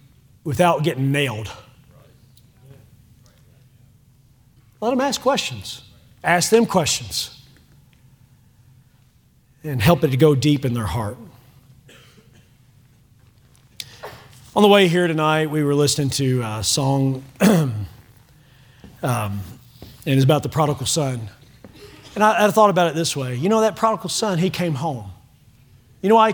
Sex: male